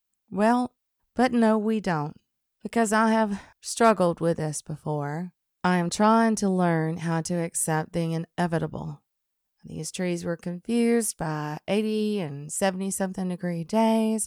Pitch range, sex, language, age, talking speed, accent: 160-205 Hz, female, English, 20-39, 135 wpm, American